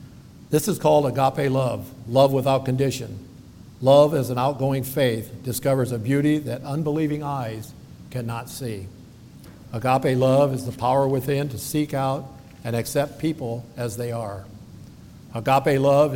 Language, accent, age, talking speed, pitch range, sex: English, American, 60-79, 140 wpm, 125-145 Hz, male